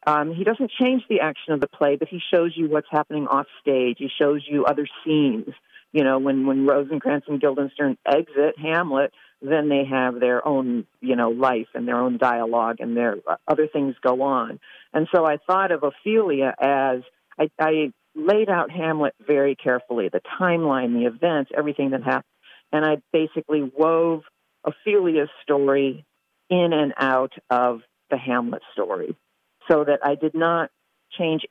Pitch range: 135-160 Hz